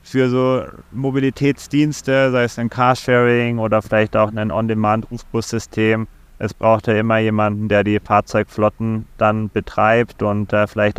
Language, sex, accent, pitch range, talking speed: German, male, German, 100-110 Hz, 155 wpm